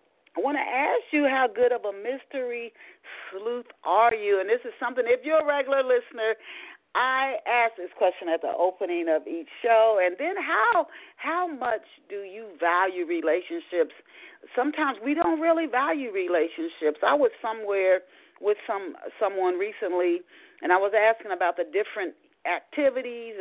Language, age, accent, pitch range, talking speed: English, 40-59, American, 180-260 Hz, 160 wpm